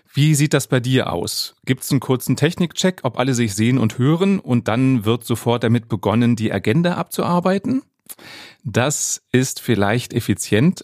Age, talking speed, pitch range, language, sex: 30-49, 165 wpm, 110-140 Hz, German, male